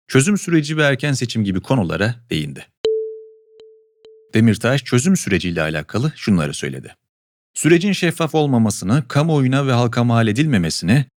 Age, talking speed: 40-59, 115 wpm